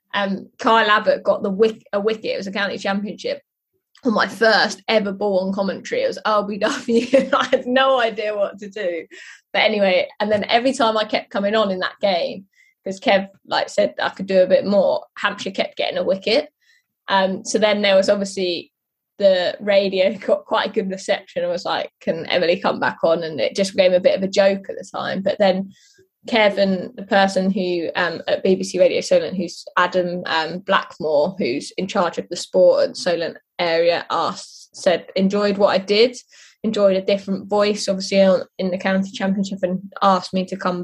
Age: 20-39